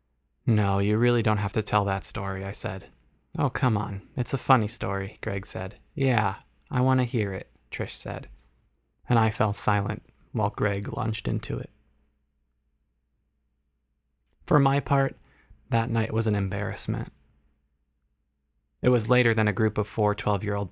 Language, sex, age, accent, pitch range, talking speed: English, male, 20-39, American, 95-115 Hz, 155 wpm